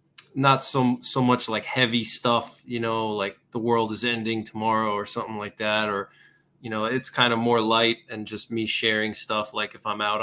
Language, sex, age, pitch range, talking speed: English, male, 20-39, 105-120 Hz, 210 wpm